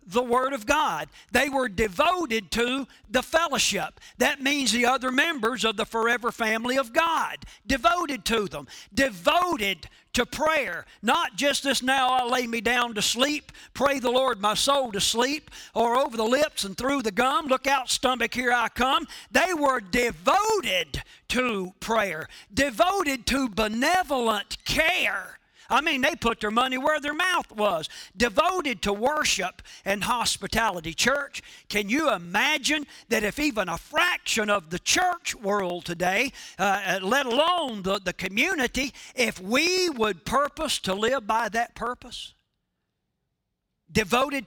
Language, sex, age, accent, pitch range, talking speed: English, male, 50-69, American, 215-280 Hz, 150 wpm